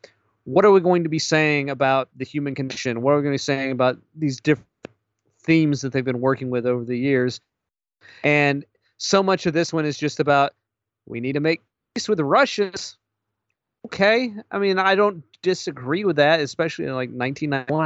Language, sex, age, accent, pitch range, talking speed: English, male, 30-49, American, 125-180 Hz, 200 wpm